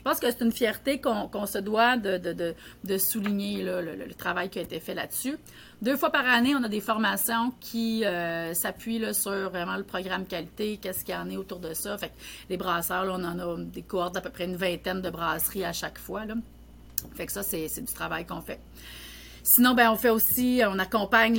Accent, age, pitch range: Canadian, 40-59, 190-230 Hz